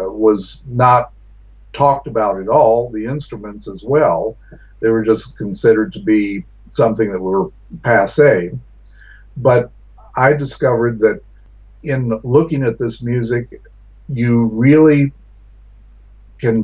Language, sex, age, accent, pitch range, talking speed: English, male, 50-69, American, 105-125 Hz, 115 wpm